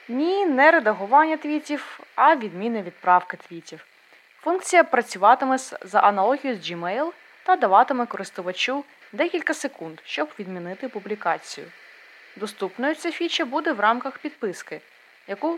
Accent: native